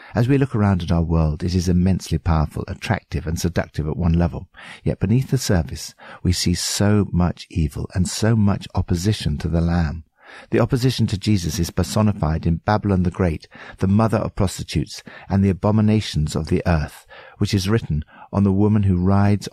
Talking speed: 185 wpm